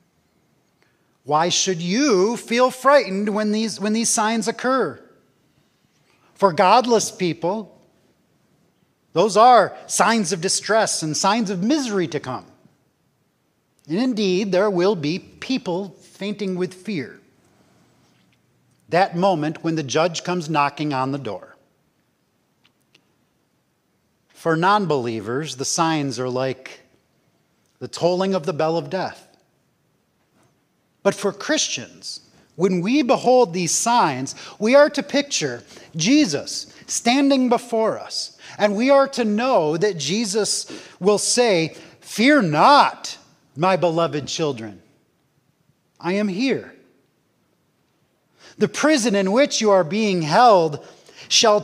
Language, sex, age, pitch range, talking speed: English, male, 40-59, 160-225 Hz, 115 wpm